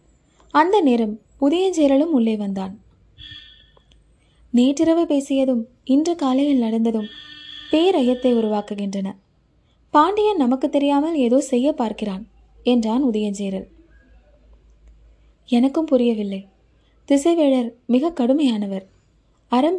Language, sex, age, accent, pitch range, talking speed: Tamil, female, 20-39, native, 220-280 Hz, 80 wpm